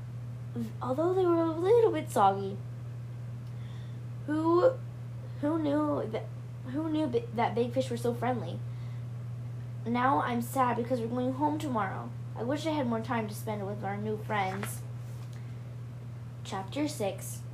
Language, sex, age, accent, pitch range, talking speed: English, female, 10-29, American, 120-130 Hz, 140 wpm